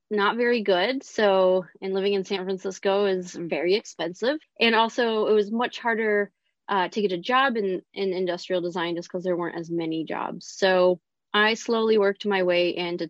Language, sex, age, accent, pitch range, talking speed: English, female, 20-39, American, 180-210 Hz, 190 wpm